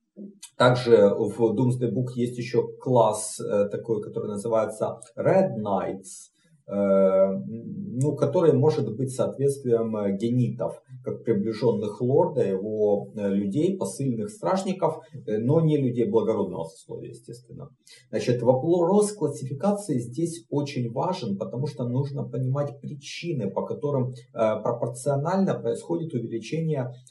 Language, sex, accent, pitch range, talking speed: Russian, male, native, 115-155 Hz, 105 wpm